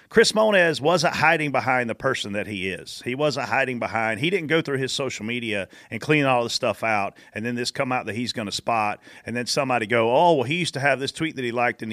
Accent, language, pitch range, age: American, English, 115-150 Hz, 40-59